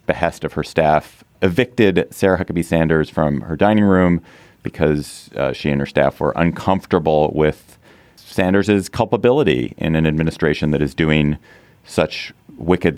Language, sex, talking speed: English, male, 145 wpm